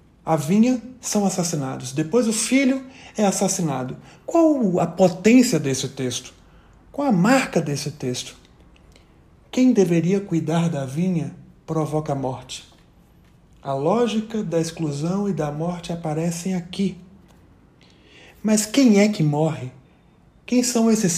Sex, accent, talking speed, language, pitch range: male, Brazilian, 125 wpm, Portuguese, 160-215 Hz